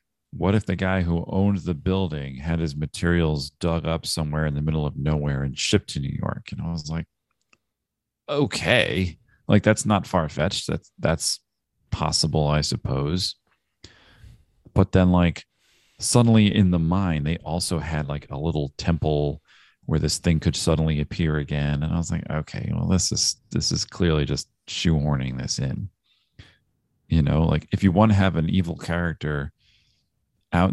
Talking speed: 170 wpm